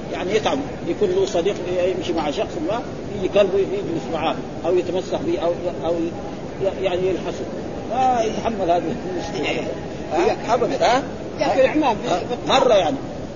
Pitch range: 180-230 Hz